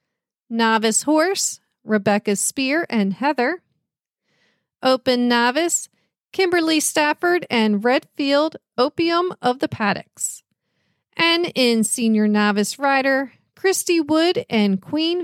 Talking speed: 100 wpm